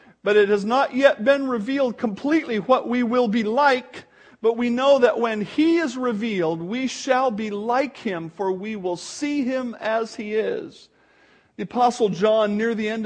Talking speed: 185 wpm